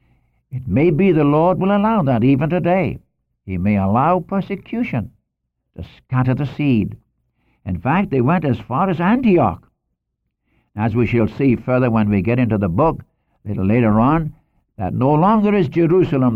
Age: 60-79